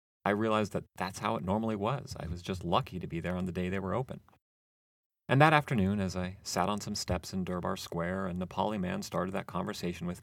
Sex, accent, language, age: male, American, English, 30-49